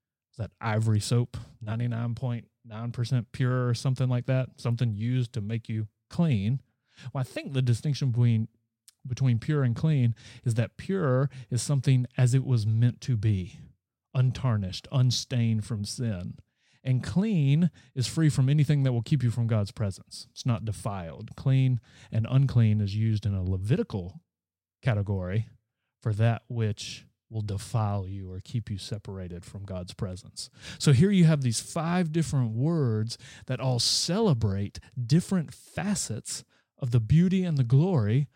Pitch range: 110-140 Hz